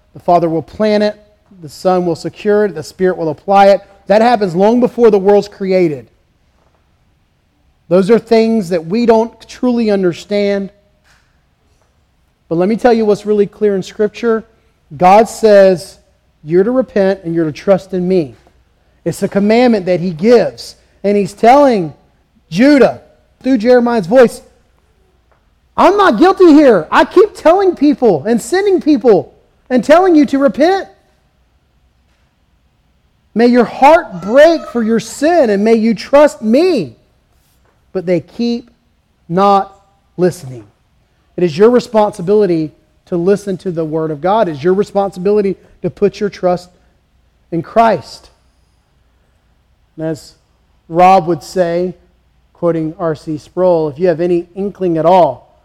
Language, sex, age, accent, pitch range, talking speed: English, male, 40-59, American, 165-225 Hz, 140 wpm